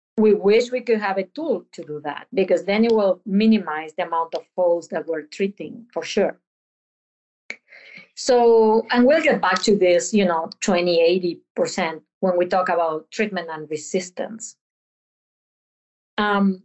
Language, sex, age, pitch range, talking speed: English, female, 40-59, 185-230 Hz, 155 wpm